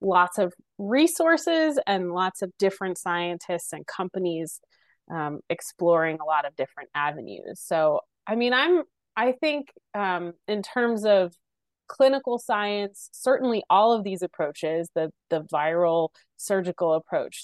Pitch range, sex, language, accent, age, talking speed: 165-210 Hz, female, English, American, 30-49, 135 wpm